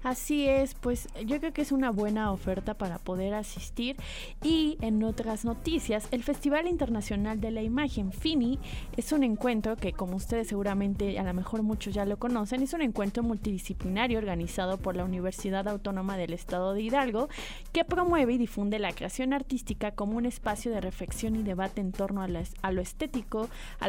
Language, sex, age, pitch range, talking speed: Spanish, female, 20-39, 195-250 Hz, 180 wpm